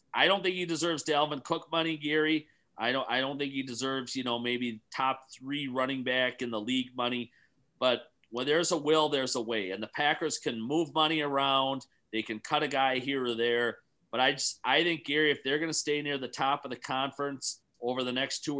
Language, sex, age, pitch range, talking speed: English, male, 30-49, 120-140 Hz, 230 wpm